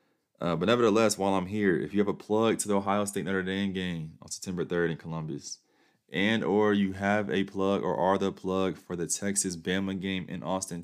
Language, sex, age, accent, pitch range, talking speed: English, male, 20-39, American, 80-95 Hz, 215 wpm